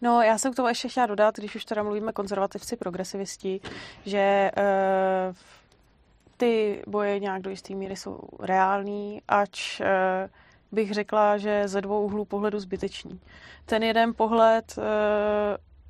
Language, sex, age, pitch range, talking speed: Czech, female, 20-39, 195-220 Hz, 145 wpm